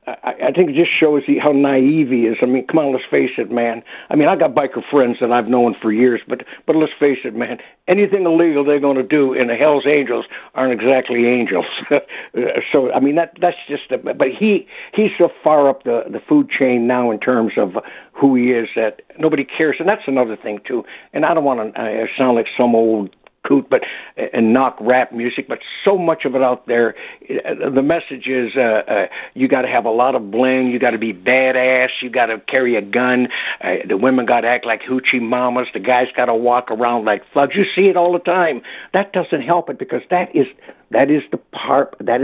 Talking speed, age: 230 wpm, 60-79